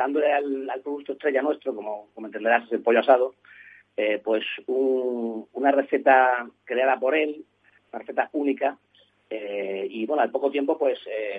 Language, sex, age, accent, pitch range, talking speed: Spanish, male, 30-49, Spanish, 110-135 Hz, 160 wpm